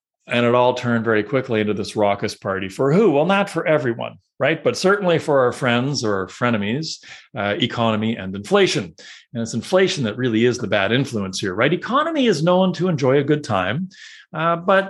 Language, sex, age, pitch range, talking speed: English, male, 40-59, 115-195 Hz, 195 wpm